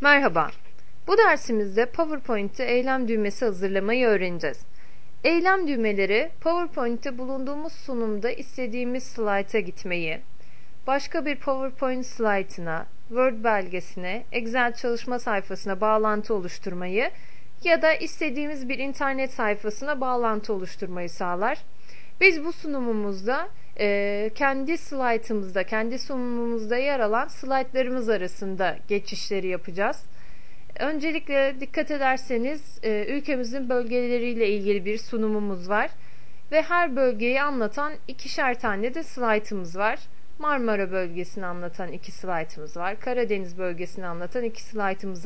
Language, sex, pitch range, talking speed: Turkish, female, 200-275 Hz, 105 wpm